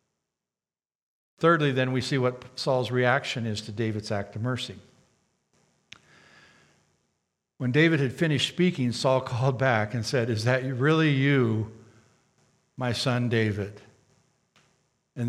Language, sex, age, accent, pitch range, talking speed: English, male, 60-79, American, 120-135 Hz, 120 wpm